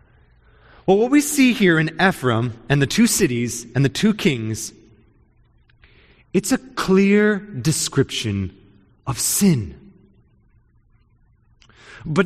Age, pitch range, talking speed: 30-49, 115-185 Hz, 110 wpm